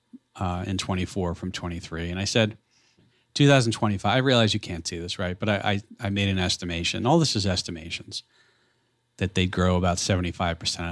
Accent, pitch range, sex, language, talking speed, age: American, 95-120 Hz, male, English, 180 wpm, 40-59